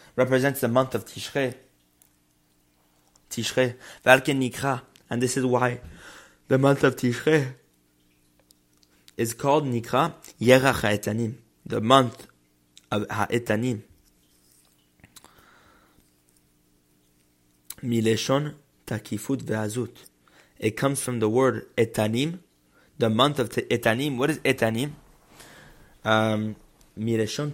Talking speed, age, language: 90 wpm, 20-39, English